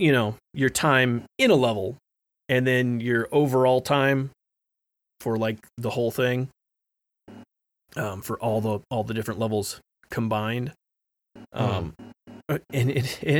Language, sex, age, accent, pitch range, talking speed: English, male, 30-49, American, 110-140 Hz, 135 wpm